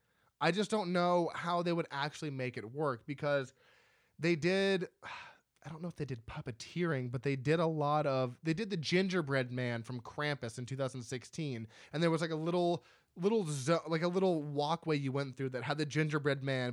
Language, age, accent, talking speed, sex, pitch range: English, 20-39, American, 200 wpm, male, 130-170 Hz